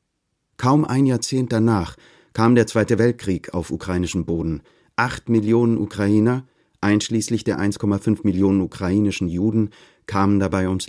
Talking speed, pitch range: 125 wpm, 100-120 Hz